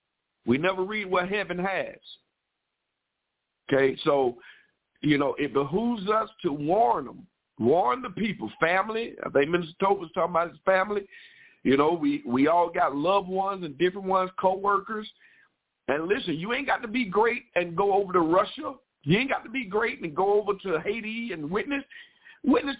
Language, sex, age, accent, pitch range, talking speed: English, male, 50-69, American, 170-235 Hz, 180 wpm